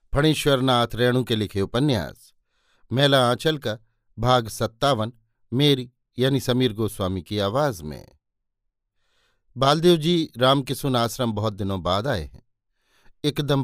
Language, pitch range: Hindi, 110-140 Hz